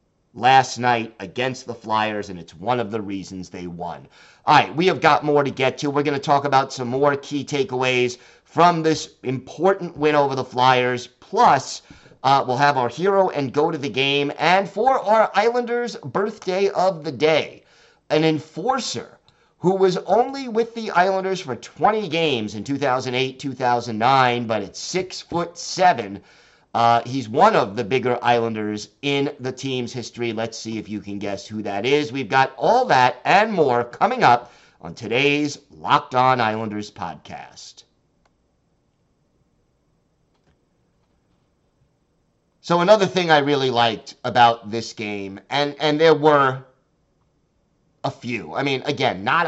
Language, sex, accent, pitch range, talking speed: English, male, American, 120-155 Hz, 155 wpm